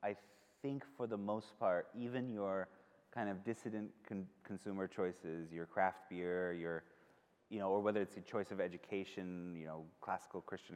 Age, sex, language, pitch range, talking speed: 30-49, male, English, 85-105 Hz, 175 wpm